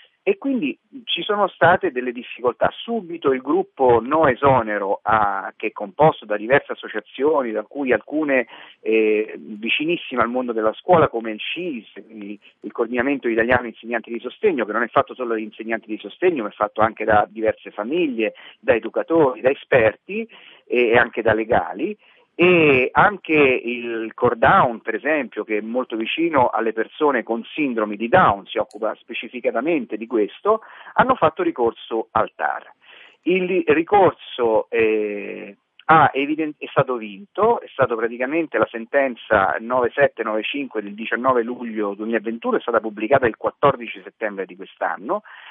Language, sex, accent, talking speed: Italian, male, native, 145 wpm